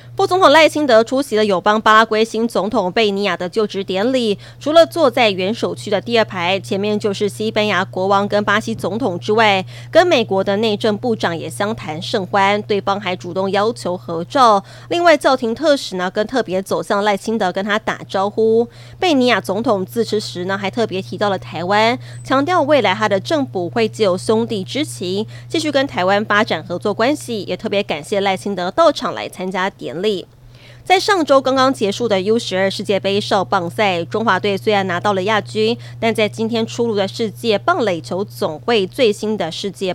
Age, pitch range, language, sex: 20-39, 190-230 Hz, Chinese, female